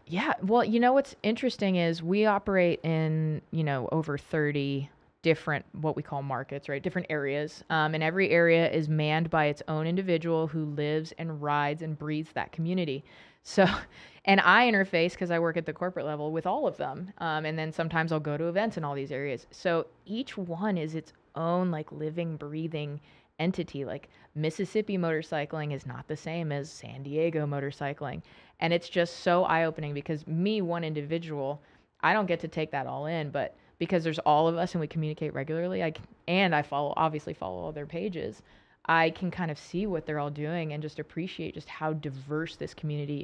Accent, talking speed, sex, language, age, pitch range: American, 195 wpm, female, English, 20-39, 150-170 Hz